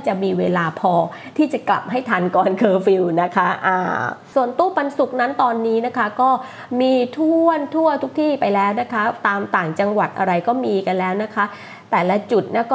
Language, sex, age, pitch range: Thai, female, 20-39, 200-295 Hz